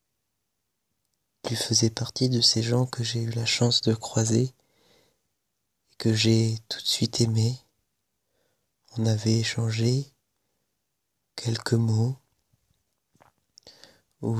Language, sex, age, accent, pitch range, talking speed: French, male, 20-39, French, 110-120 Hz, 110 wpm